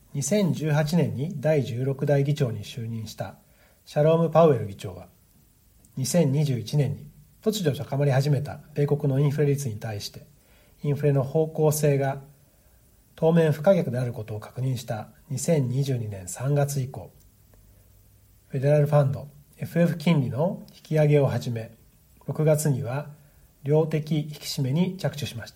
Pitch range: 125-155 Hz